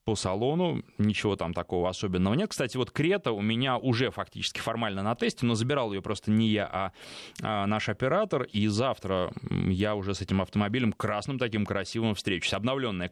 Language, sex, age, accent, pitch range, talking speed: Russian, male, 20-39, native, 100-130 Hz, 175 wpm